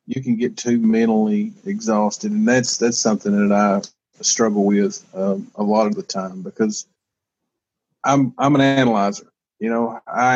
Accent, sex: American, male